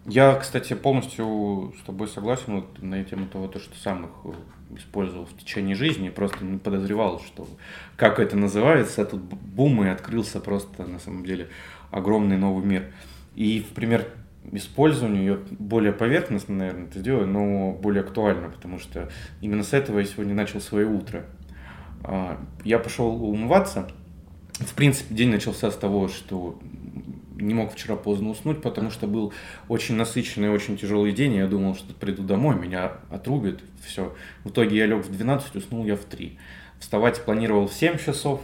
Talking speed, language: 160 wpm, Russian